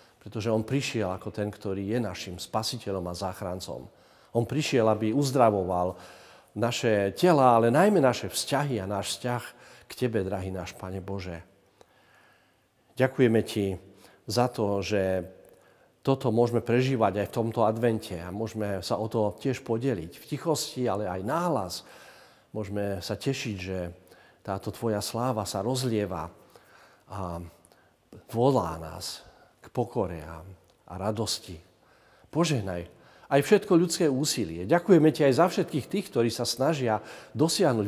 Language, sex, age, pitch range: Slovak, male, 50-69, 95-125 Hz